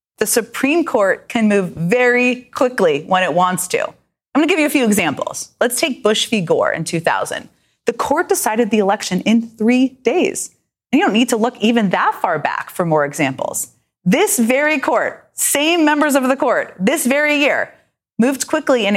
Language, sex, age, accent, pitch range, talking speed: English, female, 30-49, American, 185-275 Hz, 190 wpm